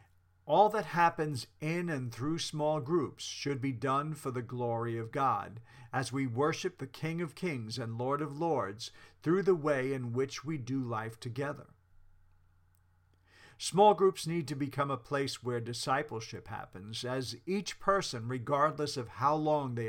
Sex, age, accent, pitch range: male, 50-69, American, 115-155 Hz